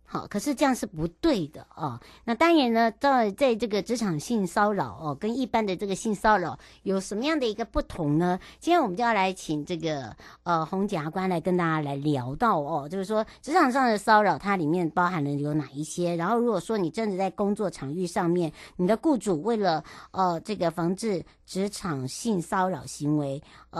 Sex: male